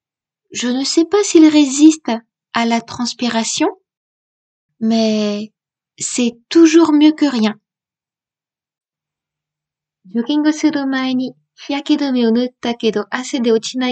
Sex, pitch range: female, 205-295 Hz